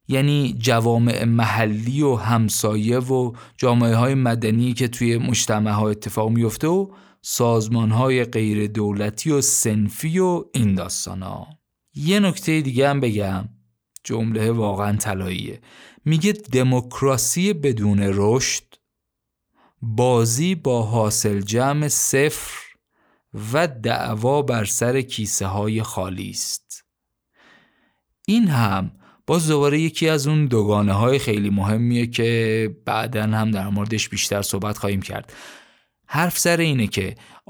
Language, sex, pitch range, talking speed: Persian, male, 105-130 Hz, 115 wpm